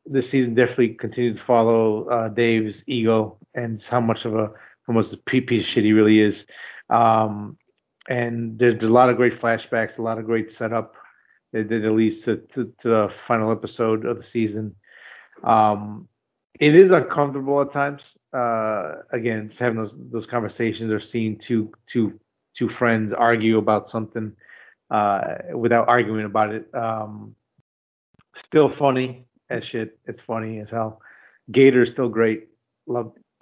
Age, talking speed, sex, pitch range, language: 30-49, 155 wpm, male, 110-125 Hz, English